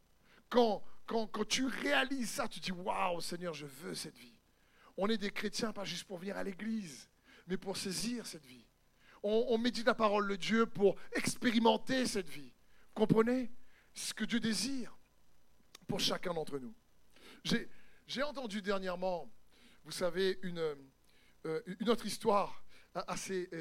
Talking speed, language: 165 wpm, French